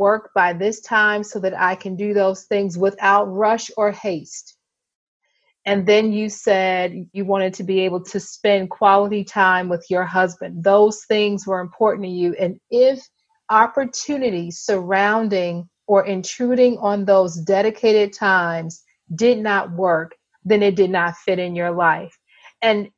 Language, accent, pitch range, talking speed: English, American, 180-215 Hz, 155 wpm